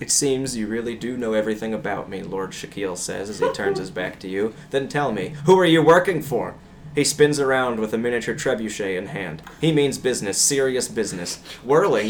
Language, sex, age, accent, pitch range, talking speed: English, male, 20-39, American, 105-140 Hz, 210 wpm